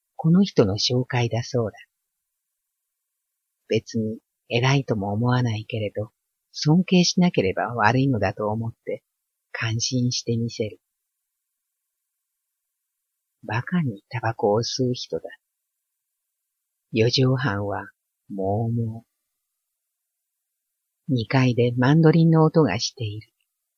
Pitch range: 110-135 Hz